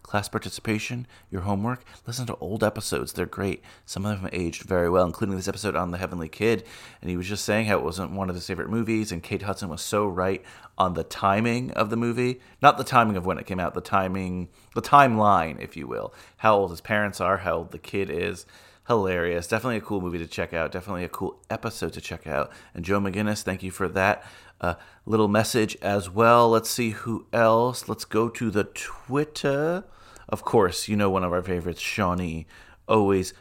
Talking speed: 215 wpm